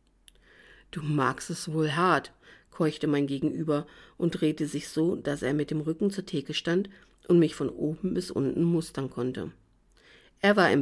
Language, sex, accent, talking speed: German, female, German, 170 wpm